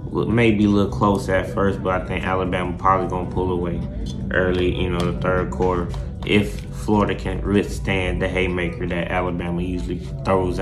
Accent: American